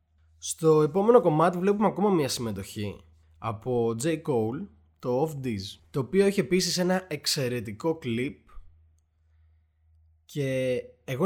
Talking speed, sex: 115 wpm, male